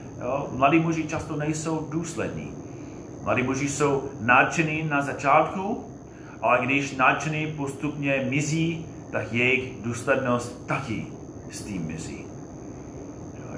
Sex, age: male, 30-49